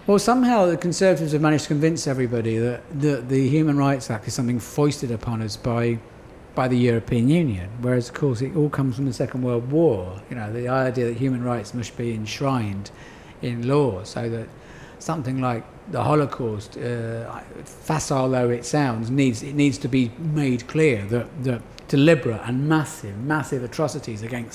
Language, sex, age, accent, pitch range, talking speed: English, male, 50-69, British, 115-140 Hz, 180 wpm